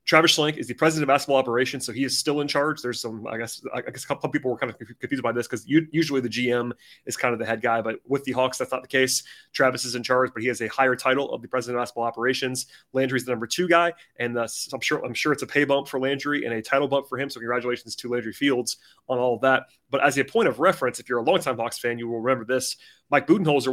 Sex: male